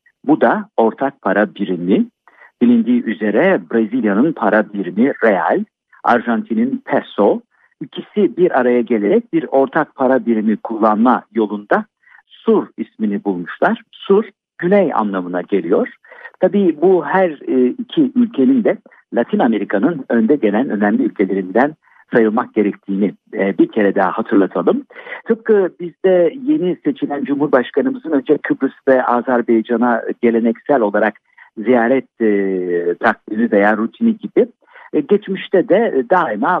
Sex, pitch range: male, 115-185 Hz